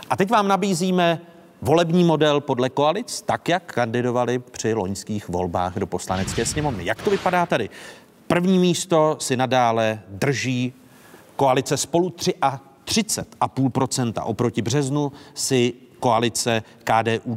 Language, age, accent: Czech, 40-59, native